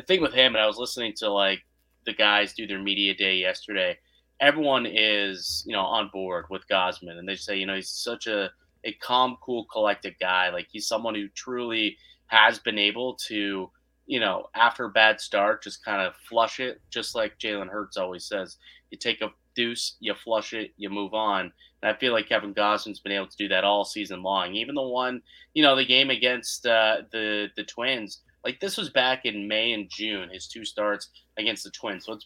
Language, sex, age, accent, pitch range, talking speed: English, male, 30-49, American, 100-120 Hz, 215 wpm